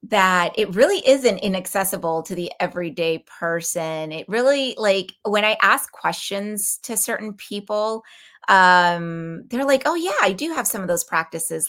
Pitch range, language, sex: 170-210 Hz, English, female